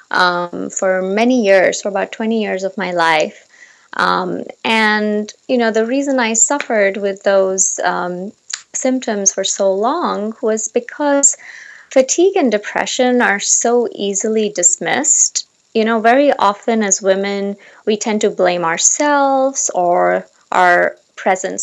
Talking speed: 135 wpm